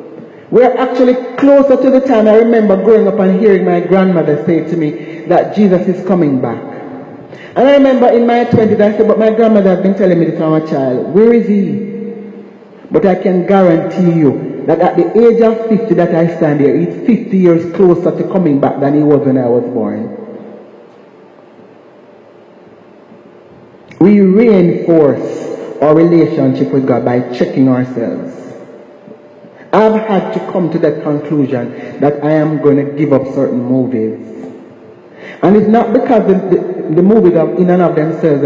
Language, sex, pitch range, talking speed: English, male, 160-230 Hz, 170 wpm